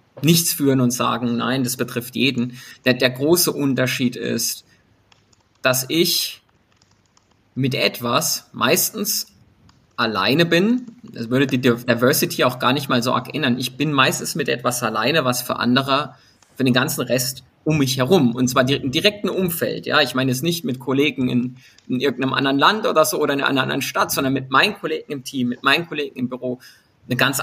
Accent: German